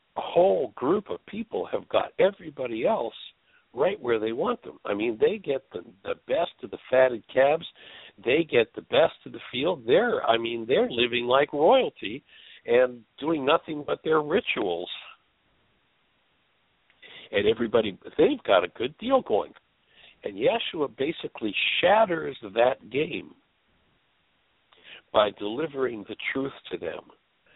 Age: 60-79